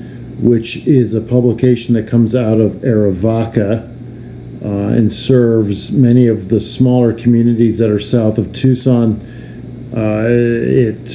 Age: 50-69